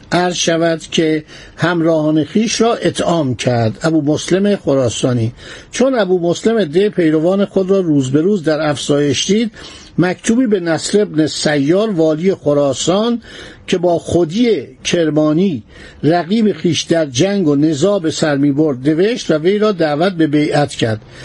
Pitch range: 150-195 Hz